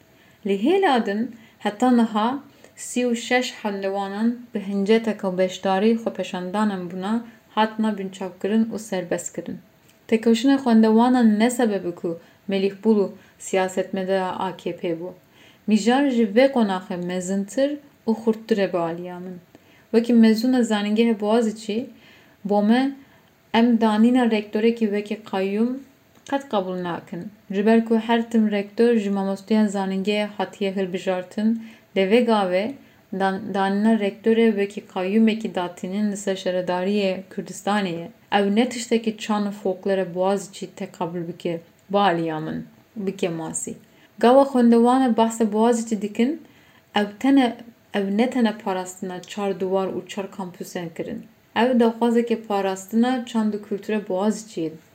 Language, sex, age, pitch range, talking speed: Turkish, female, 30-49, 190-230 Hz, 105 wpm